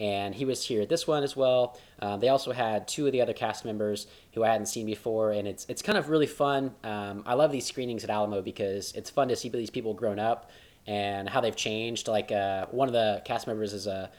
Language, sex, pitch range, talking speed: English, male, 105-130 Hz, 255 wpm